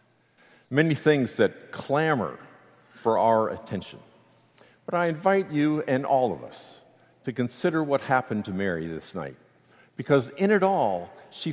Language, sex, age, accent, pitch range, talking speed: English, male, 50-69, American, 120-160 Hz, 145 wpm